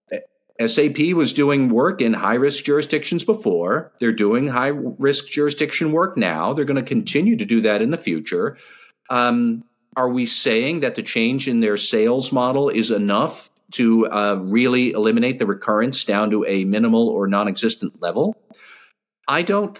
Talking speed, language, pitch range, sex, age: 165 wpm, English, 110-170 Hz, male, 50-69